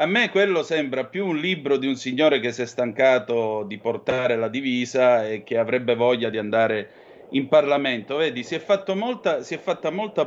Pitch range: 125-155 Hz